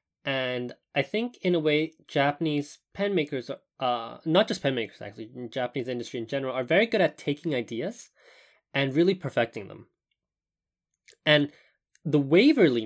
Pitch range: 125-170 Hz